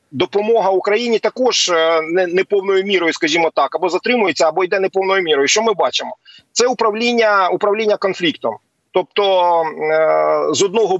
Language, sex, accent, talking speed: Ukrainian, male, native, 125 wpm